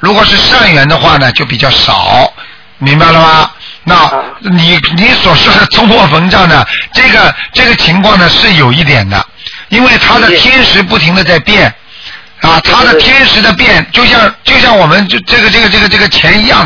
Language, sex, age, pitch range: Chinese, male, 50-69, 155-200 Hz